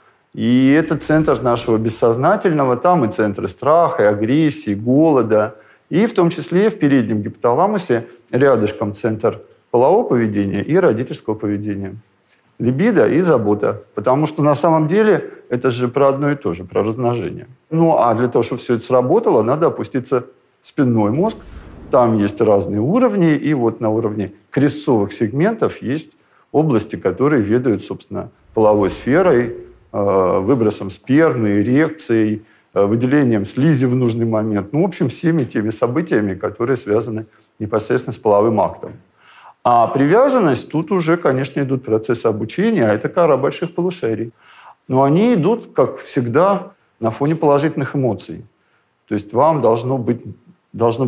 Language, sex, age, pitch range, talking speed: Russian, male, 50-69, 110-155 Hz, 140 wpm